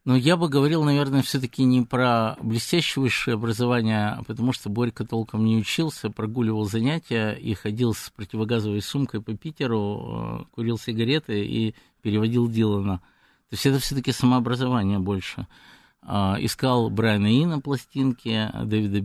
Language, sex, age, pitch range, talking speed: Russian, male, 50-69, 110-125 Hz, 135 wpm